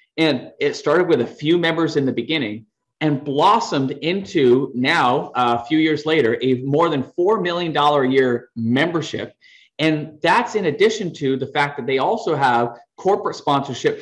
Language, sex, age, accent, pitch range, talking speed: English, male, 30-49, American, 125-185 Hz, 170 wpm